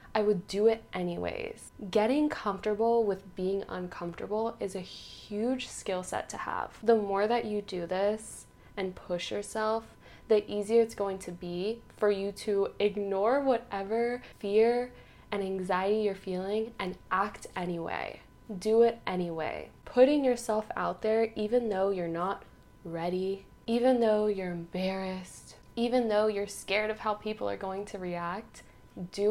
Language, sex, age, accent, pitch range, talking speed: English, female, 10-29, American, 190-225 Hz, 150 wpm